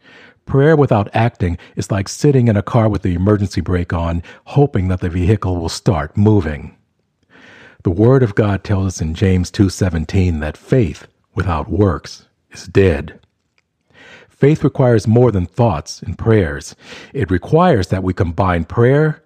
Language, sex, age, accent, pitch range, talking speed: English, male, 50-69, American, 90-120 Hz, 155 wpm